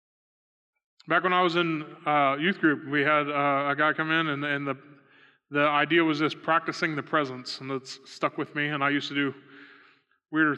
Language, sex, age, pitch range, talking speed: English, male, 20-39, 145-195 Hz, 205 wpm